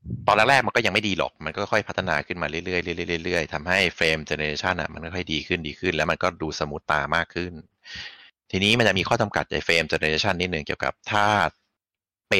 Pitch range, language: 80-100 Hz, Thai